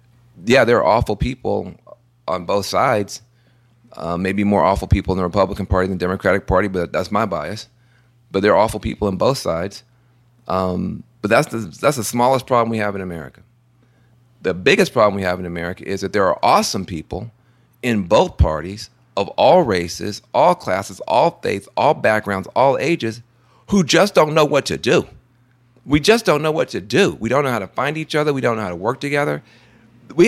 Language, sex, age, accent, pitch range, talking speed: English, male, 40-59, American, 100-125 Hz, 200 wpm